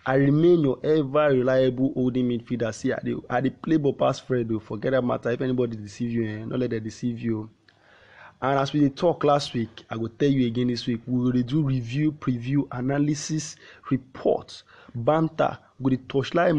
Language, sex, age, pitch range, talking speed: English, male, 20-39, 120-145 Hz, 190 wpm